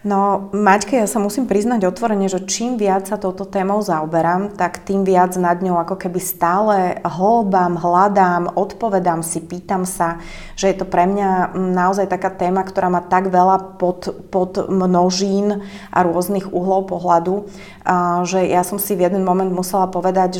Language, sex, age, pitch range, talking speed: Slovak, female, 30-49, 170-190 Hz, 160 wpm